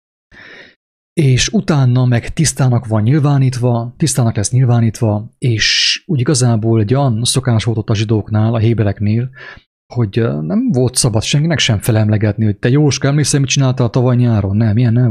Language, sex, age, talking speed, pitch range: English, male, 30-49, 145 wpm, 110-130 Hz